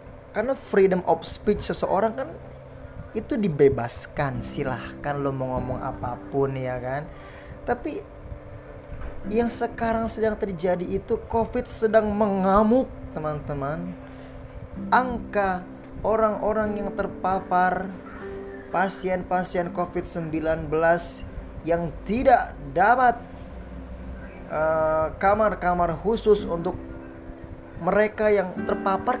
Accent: native